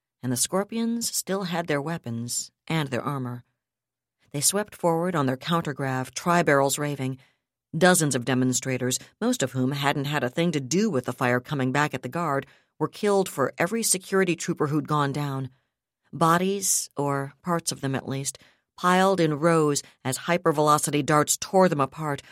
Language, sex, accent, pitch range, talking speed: English, female, American, 135-180 Hz, 170 wpm